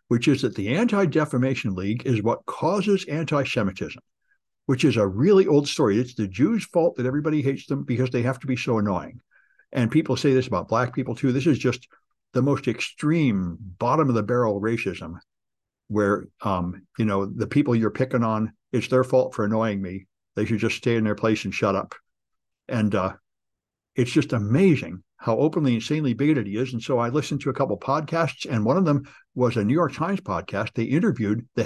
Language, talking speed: English, 195 wpm